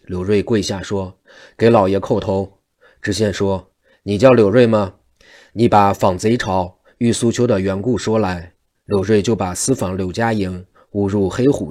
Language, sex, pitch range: Chinese, male, 95-115 Hz